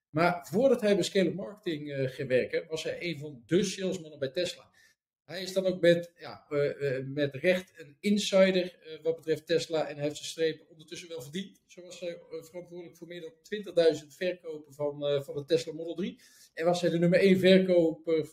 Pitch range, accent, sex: 155-195 Hz, Dutch, male